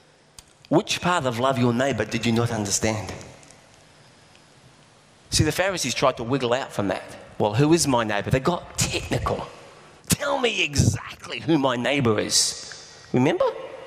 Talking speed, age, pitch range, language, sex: 150 wpm, 40-59, 115-170 Hz, English, male